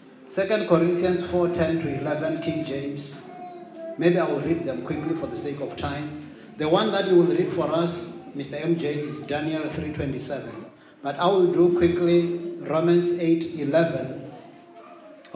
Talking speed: 140 wpm